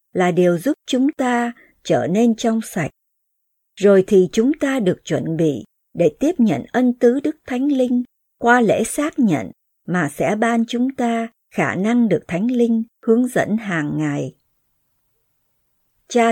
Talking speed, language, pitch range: 160 wpm, Vietnamese, 175-240 Hz